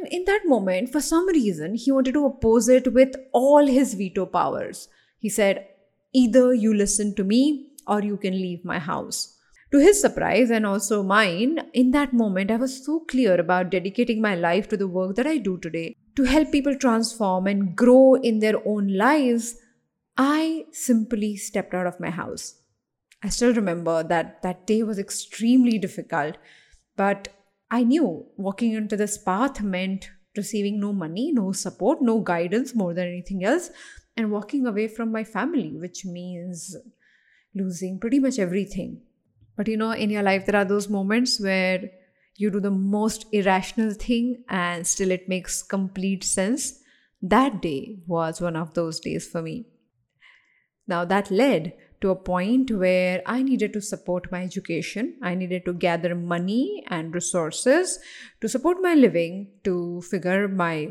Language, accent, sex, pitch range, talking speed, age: English, Indian, female, 185-250 Hz, 165 wpm, 20-39